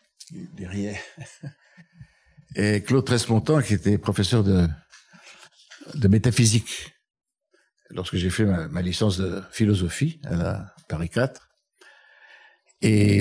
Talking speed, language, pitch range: 95 wpm, French, 95-120 Hz